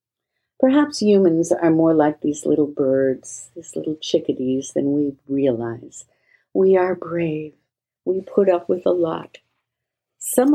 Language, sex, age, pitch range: English, female, 60-79, 140-210 Hz